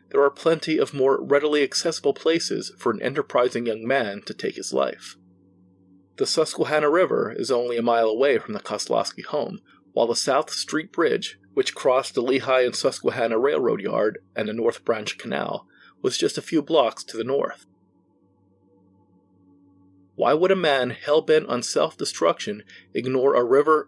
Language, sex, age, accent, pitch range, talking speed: English, male, 30-49, American, 95-150 Hz, 170 wpm